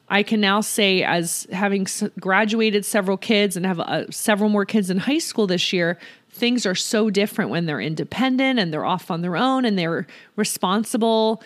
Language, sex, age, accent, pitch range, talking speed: English, female, 30-49, American, 195-255 Hz, 190 wpm